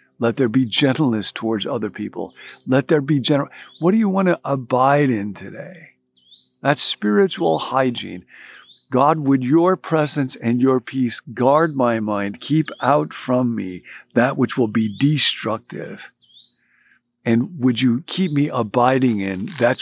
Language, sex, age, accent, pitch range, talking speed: English, male, 50-69, American, 115-155 Hz, 150 wpm